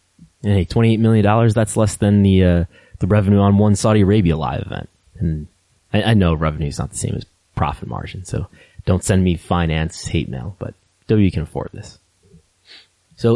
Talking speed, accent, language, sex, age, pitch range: 190 wpm, American, English, male, 30-49, 85-100 Hz